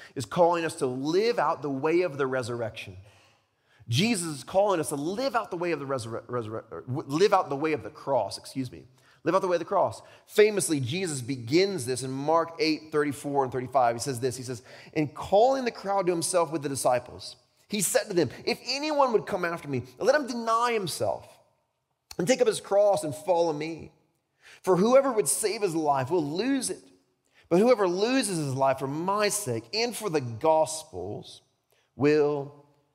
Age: 30-49